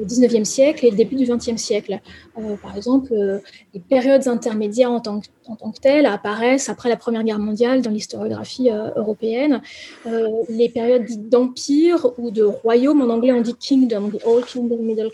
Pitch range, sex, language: 235-275 Hz, female, English